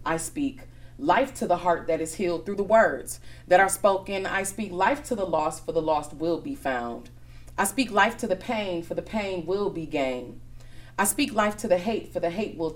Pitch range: 140-200 Hz